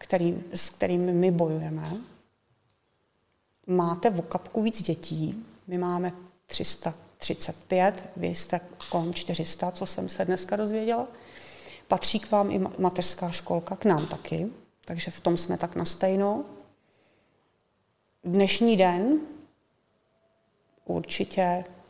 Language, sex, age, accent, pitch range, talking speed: Czech, female, 30-49, native, 170-200 Hz, 110 wpm